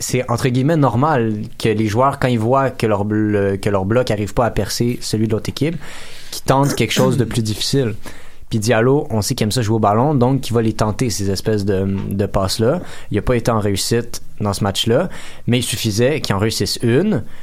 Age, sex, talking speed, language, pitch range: 20-39, male, 240 wpm, French, 105-120 Hz